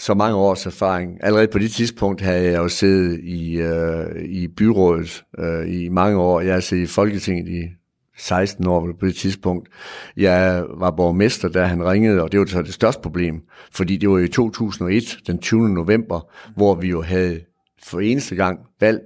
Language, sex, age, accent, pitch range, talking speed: Danish, male, 60-79, native, 85-105 Hz, 190 wpm